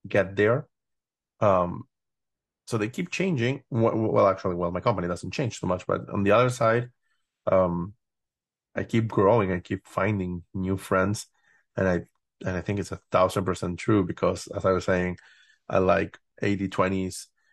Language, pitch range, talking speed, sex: English, 95-105 Hz, 165 wpm, male